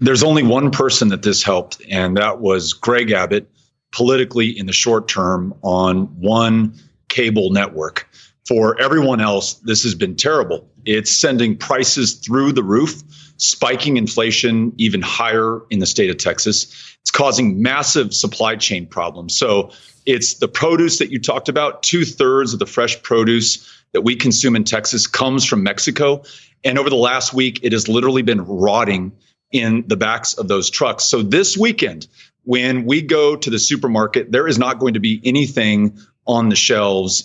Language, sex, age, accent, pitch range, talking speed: English, male, 40-59, American, 105-130 Hz, 170 wpm